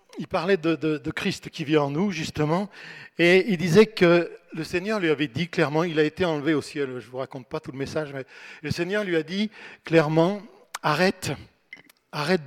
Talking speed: 210 wpm